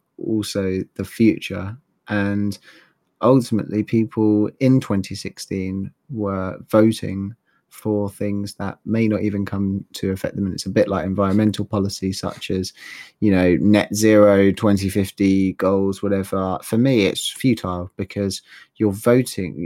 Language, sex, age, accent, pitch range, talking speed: English, male, 30-49, British, 95-105 Hz, 130 wpm